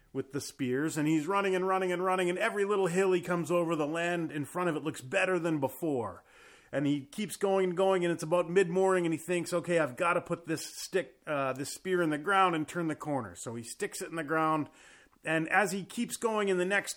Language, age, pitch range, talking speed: English, 30-49, 155-190 Hz, 255 wpm